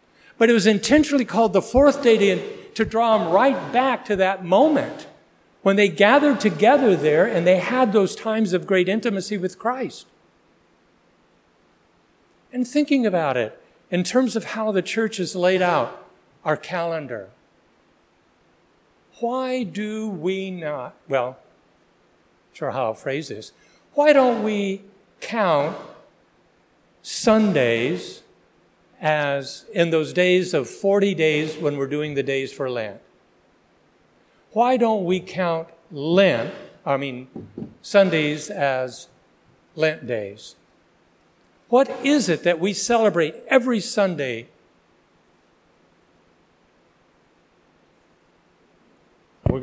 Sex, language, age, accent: male, English, 60-79, American